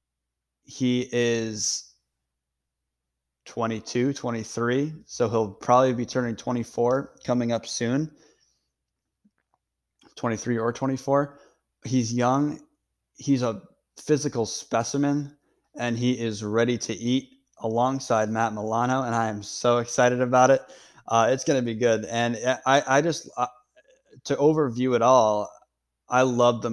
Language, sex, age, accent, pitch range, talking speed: English, male, 20-39, American, 110-130 Hz, 125 wpm